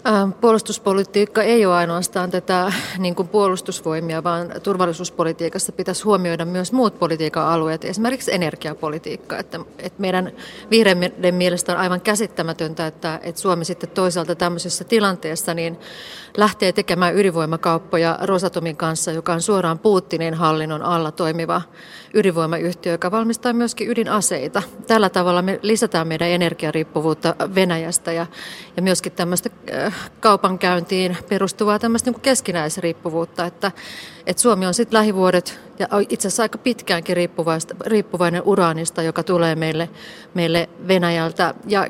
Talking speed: 115 wpm